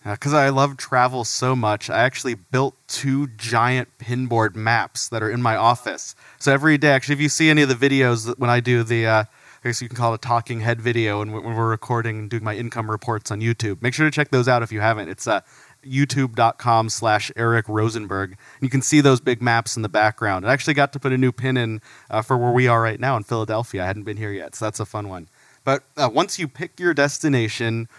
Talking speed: 245 wpm